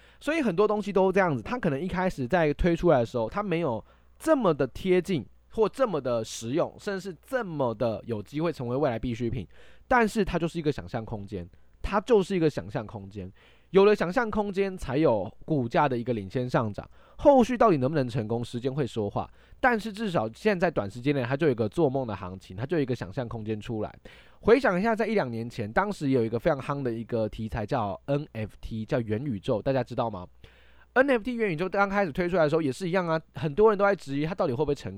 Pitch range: 115-190 Hz